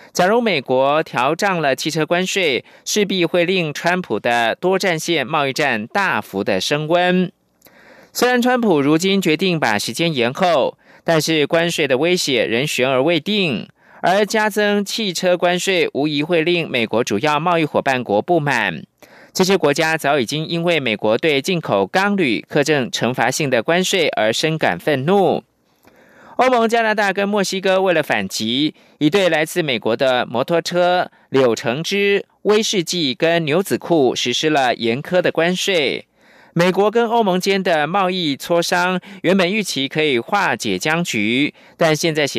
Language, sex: German, male